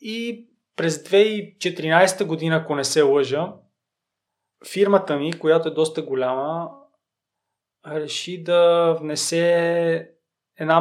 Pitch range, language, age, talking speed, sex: 150-190 Hz, Bulgarian, 20-39, 100 wpm, male